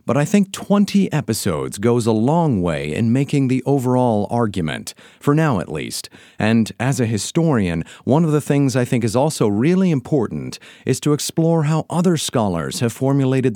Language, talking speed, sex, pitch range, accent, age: English, 175 wpm, male, 105-145 Hz, American, 40-59